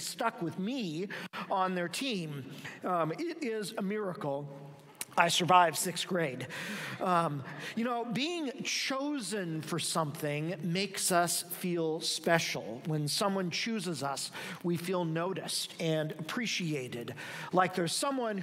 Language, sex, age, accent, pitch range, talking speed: English, male, 50-69, American, 155-200 Hz, 125 wpm